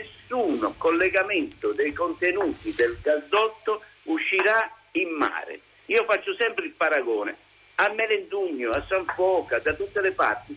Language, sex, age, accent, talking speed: Italian, male, 60-79, native, 125 wpm